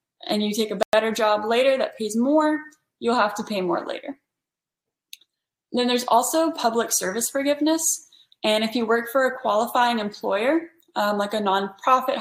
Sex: female